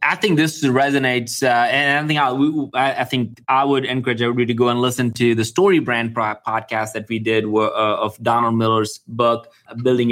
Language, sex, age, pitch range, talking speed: English, male, 20-39, 120-155 Hz, 195 wpm